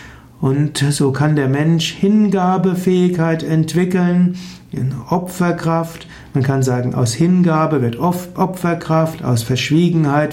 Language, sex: German, male